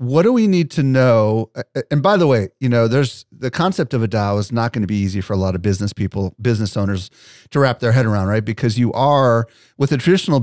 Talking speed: 255 wpm